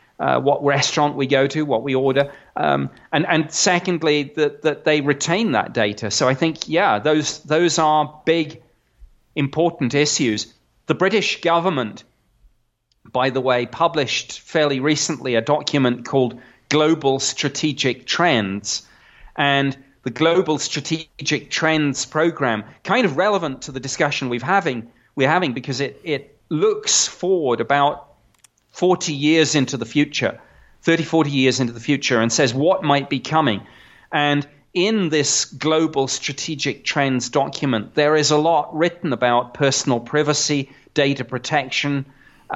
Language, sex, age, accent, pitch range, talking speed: English, male, 30-49, British, 135-160 Hz, 140 wpm